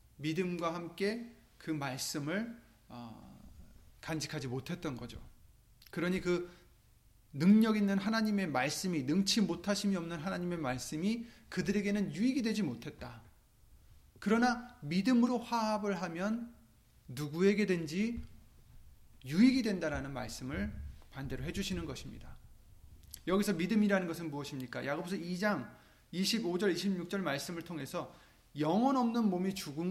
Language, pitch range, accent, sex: Korean, 135-200 Hz, native, male